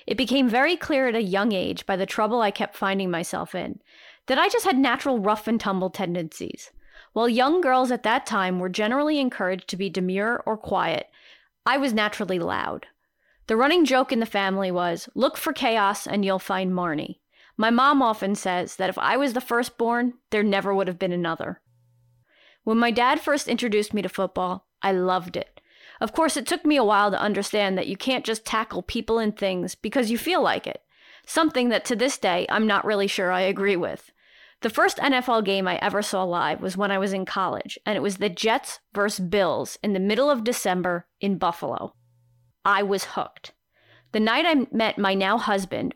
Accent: American